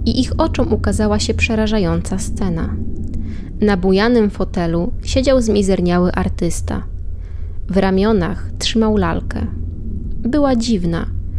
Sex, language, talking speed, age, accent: female, Polish, 100 wpm, 20-39, native